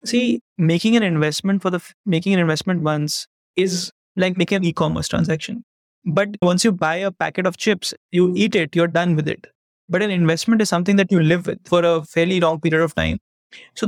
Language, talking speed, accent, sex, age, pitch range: English, 210 wpm, Indian, male, 20-39, 165-210 Hz